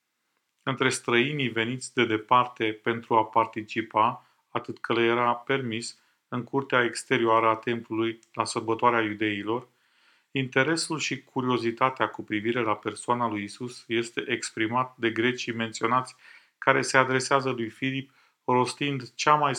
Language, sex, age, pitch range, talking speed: Romanian, male, 40-59, 115-130 Hz, 130 wpm